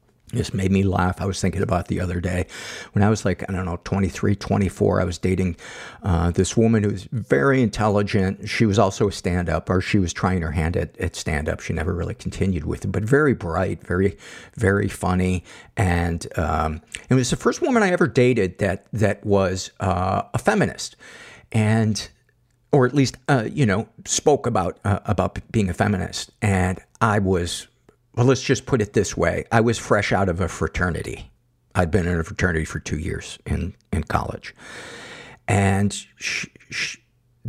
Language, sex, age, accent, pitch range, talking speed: English, male, 50-69, American, 95-120 Hz, 190 wpm